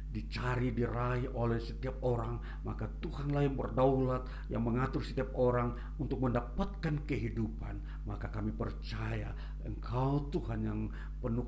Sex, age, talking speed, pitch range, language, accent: male, 50-69, 120 wpm, 110-130 Hz, Indonesian, native